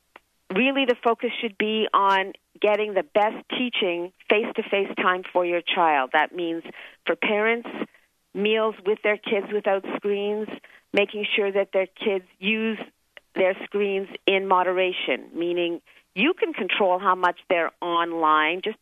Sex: female